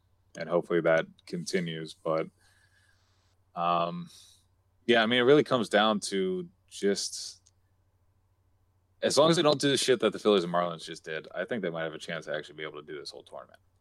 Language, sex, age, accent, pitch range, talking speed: English, male, 20-39, American, 85-100 Hz, 200 wpm